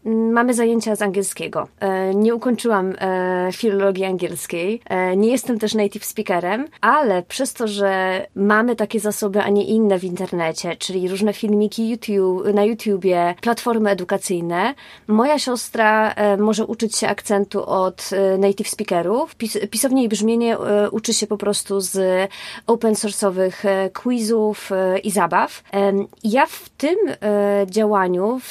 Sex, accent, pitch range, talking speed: female, native, 195-225 Hz, 125 wpm